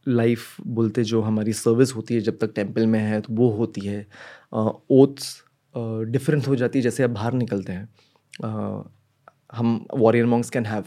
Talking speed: 190 wpm